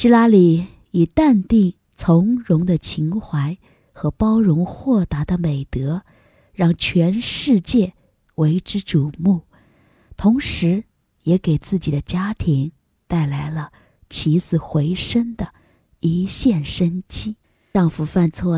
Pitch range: 160-200 Hz